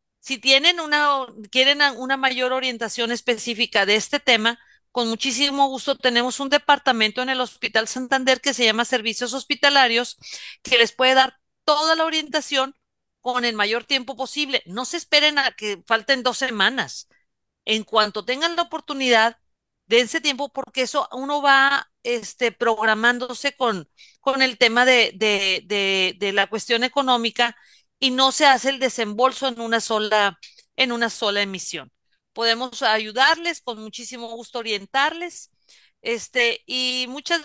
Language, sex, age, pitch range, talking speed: Spanish, female, 40-59, 230-275 Hz, 145 wpm